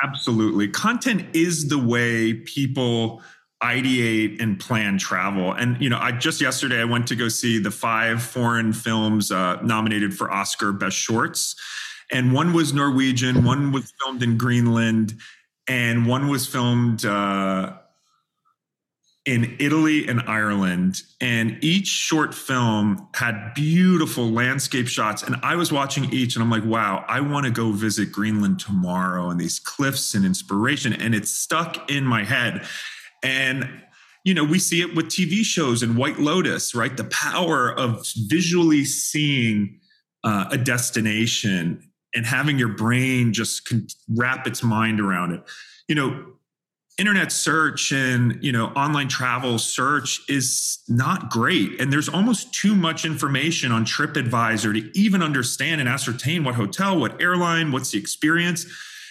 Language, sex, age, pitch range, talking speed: English, male, 30-49, 115-145 Hz, 150 wpm